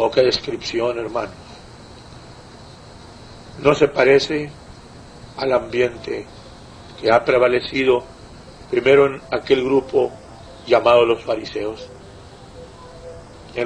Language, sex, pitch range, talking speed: English, male, 125-175 Hz, 90 wpm